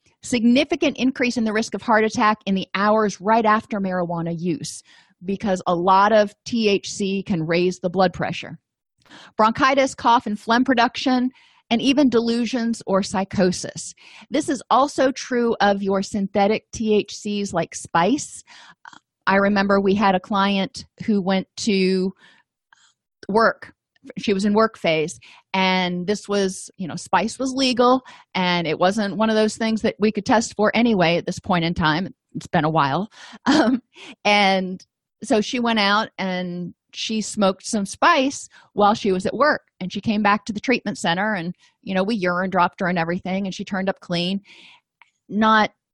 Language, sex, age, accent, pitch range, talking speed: English, female, 30-49, American, 185-225 Hz, 170 wpm